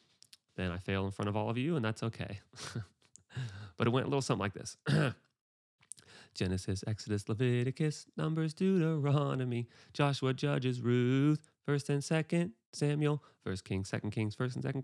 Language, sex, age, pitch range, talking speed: English, male, 30-49, 115-165 Hz, 160 wpm